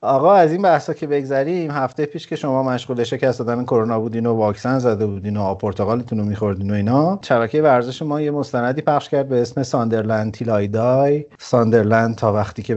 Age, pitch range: 30-49, 110-140 Hz